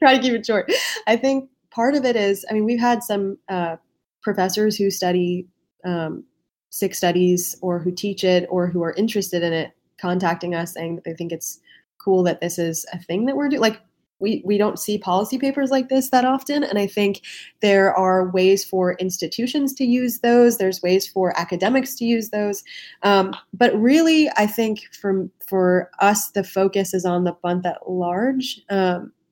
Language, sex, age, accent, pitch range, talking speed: English, female, 20-39, American, 180-220 Hz, 195 wpm